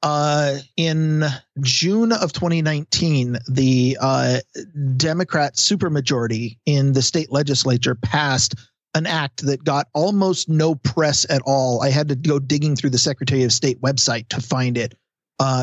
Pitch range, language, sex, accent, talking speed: 135-160 Hz, English, male, American, 145 wpm